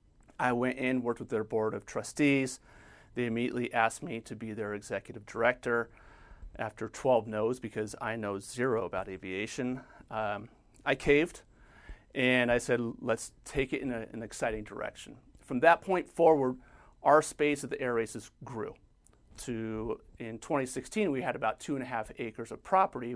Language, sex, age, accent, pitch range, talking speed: English, male, 40-59, American, 115-135 Hz, 170 wpm